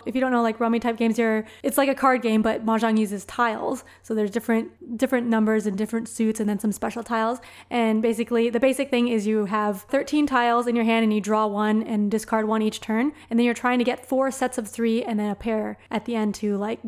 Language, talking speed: English, 255 wpm